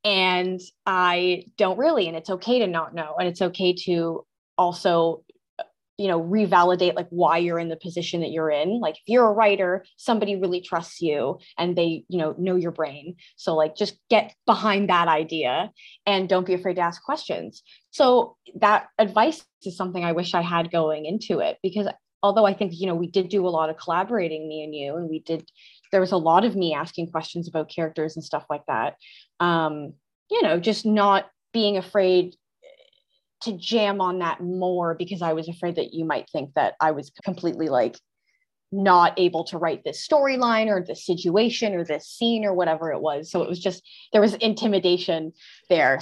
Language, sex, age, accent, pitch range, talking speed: English, female, 20-39, American, 165-205 Hz, 195 wpm